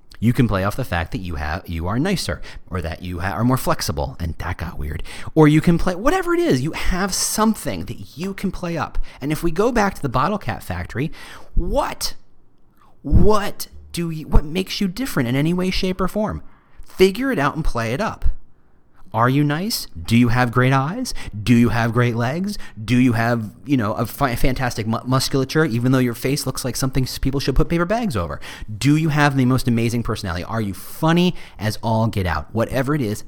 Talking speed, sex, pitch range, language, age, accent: 220 wpm, male, 110-160 Hz, English, 30-49, American